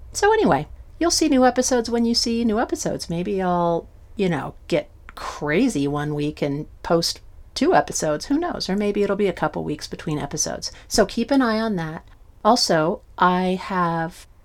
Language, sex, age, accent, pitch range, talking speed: English, female, 40-59, American, 155-200 Hz, 180 wpm